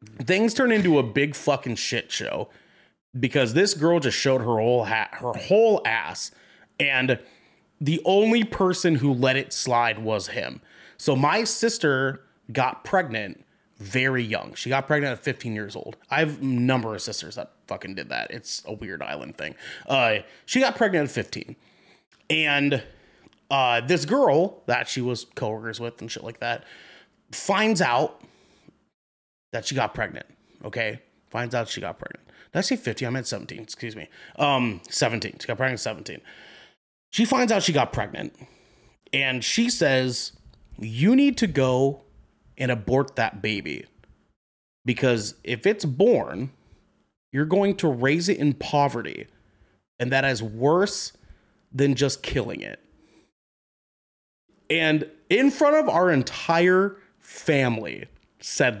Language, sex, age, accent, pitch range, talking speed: English, male, 30-49, American, 120-170 Hz, 150 wpm